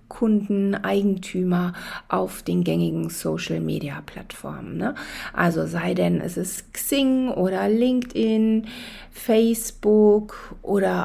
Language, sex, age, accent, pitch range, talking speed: German, female, 40-59, German, 180-220 Hz, 85 wpm